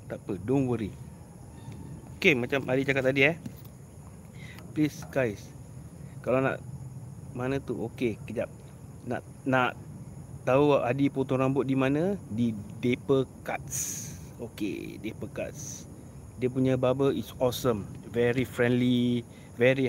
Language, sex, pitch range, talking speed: Malay, male, 110-135 Hz, 120 wpm